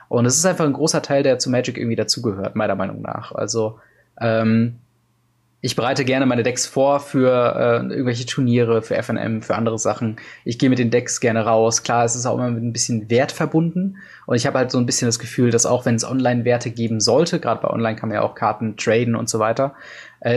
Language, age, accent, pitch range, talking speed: German, 20-39, German, 120-140 Hz, 230 wpm